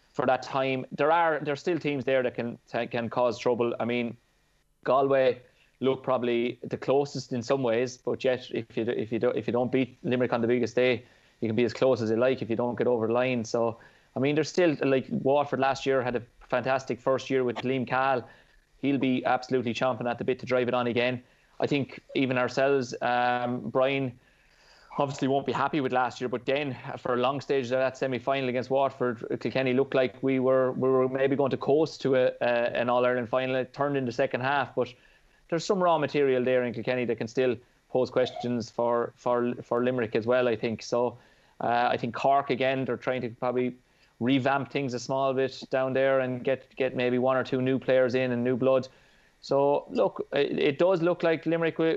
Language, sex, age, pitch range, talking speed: English, male, 20-39, 125-135 Hz, 220 wpm